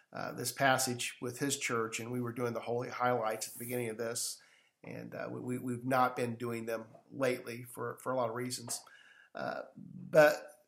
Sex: male